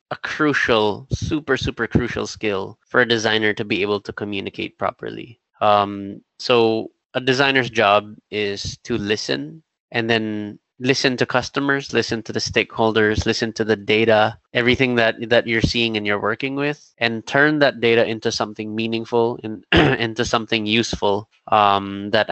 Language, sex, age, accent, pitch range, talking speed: English, male, 20-39, Filipino, 105-125 Hz, 155 wpm